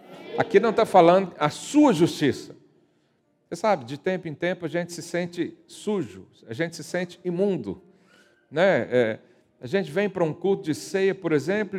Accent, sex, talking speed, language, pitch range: Brazilian, male, 175 wpm, Portuguese, 145-200 Hz